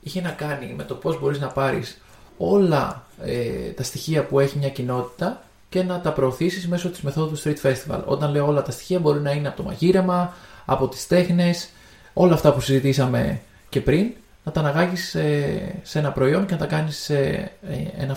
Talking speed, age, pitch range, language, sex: 200 wpm, 20-39, 135-170 Hz, Greek, male